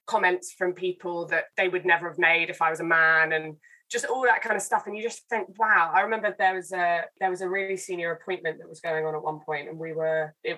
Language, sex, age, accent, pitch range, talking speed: English, female, 20-39, British, 155-185 Hz, 270 wpm